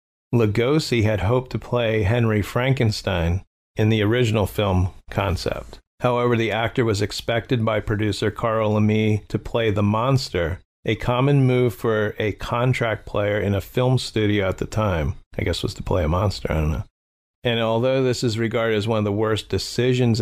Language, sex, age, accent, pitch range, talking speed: English, male, 40-59, American, 105-125 Hz, 180 wpm